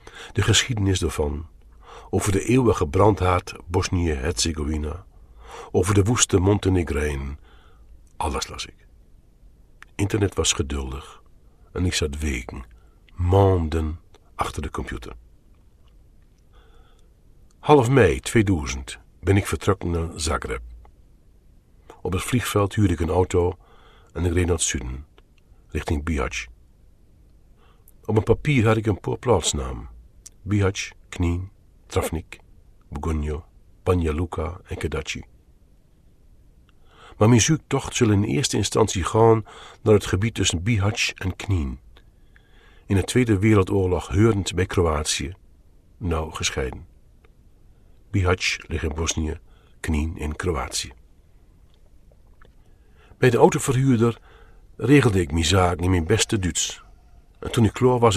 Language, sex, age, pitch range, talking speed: Dutch, male, 50-69, 80-105 Hz, 115 wpm